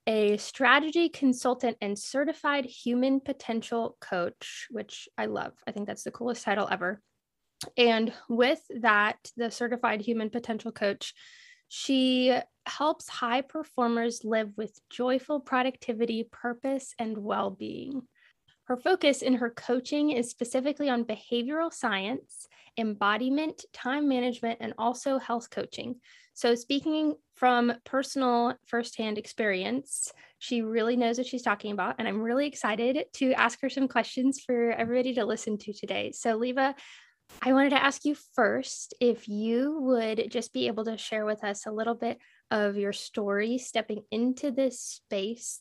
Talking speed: 145 wpm